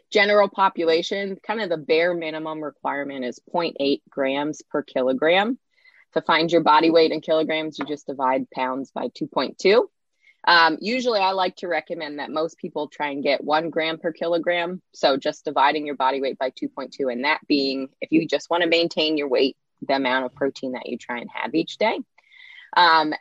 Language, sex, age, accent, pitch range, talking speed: English, female, 20-39, American, 145-170 Hz, 190 wpm